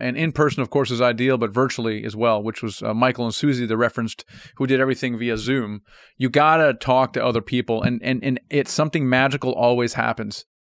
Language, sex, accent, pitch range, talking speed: English, male, American, 125-150 Hz, 215 wpm